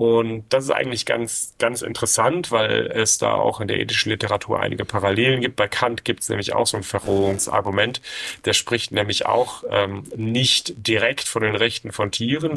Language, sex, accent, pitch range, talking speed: German, male, German, 105-130 Hz, 185 wpm